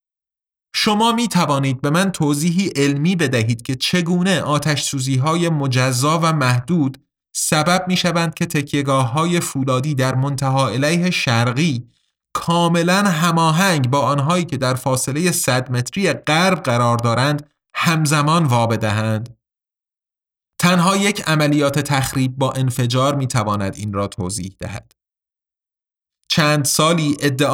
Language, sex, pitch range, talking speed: Persian, male, 125-170 Hz, 120 wpm